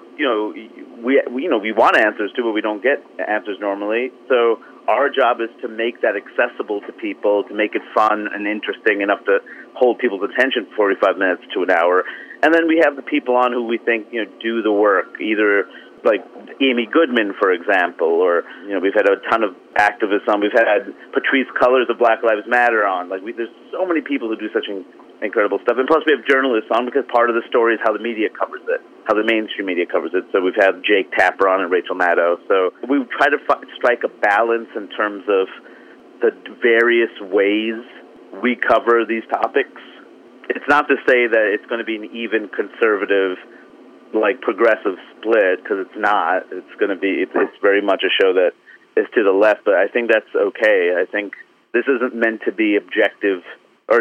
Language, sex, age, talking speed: English, male, 30-49, 210 wpm